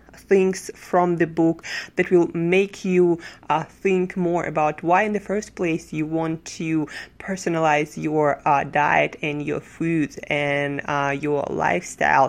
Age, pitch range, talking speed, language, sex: 20-39, 155-195 Hz, 150 wpm, English, female